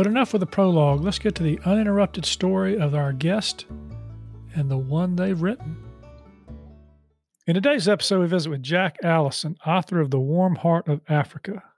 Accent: American